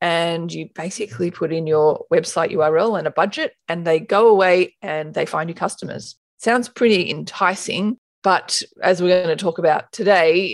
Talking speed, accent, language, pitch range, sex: 175 wpm, Australian, English, 165-210 Hz, female